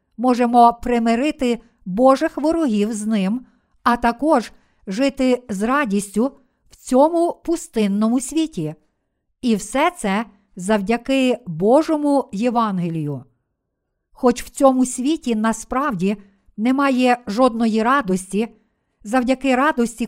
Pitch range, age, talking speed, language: 215-265 Hz, 50-69, 95 wpm, Ukrainian